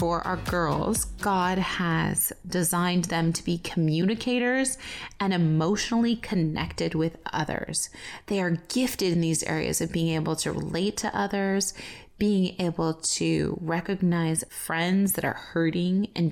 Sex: female